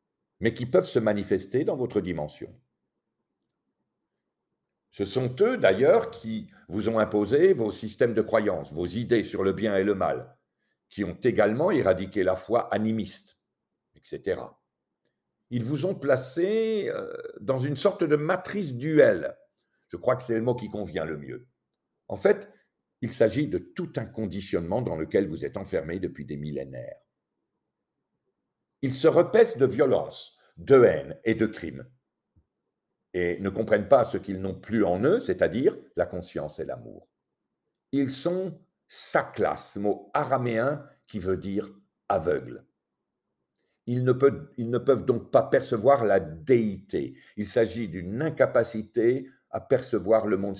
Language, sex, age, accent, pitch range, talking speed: French, male, 60-79, French, 100-150 Hz, 150 wpm